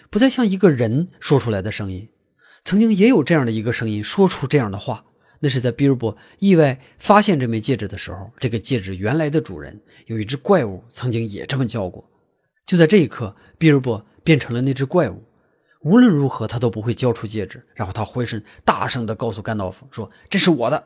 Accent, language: native, Chinese